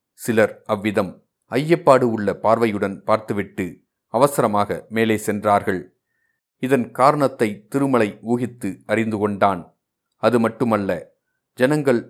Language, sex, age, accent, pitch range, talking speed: Tamil, male, 30-49, native, 105-125 Hz, 90 wpm